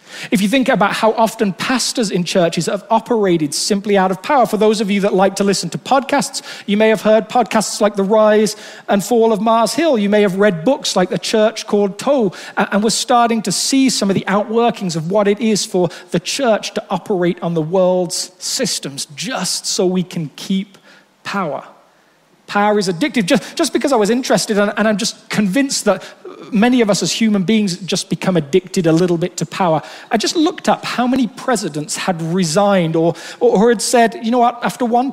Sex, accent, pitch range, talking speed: male, British, 180-230 Hz, 210 wpm